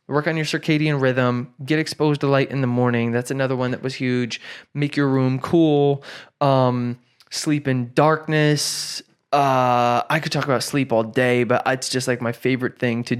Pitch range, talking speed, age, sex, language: 125-145 Hz, 190 wpm, 20-39, male, English